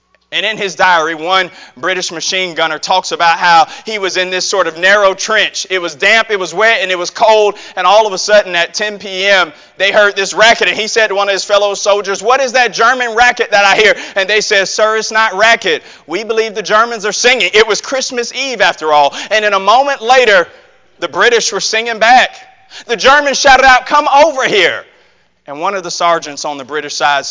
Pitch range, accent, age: 180-230 Hz, American, 30-49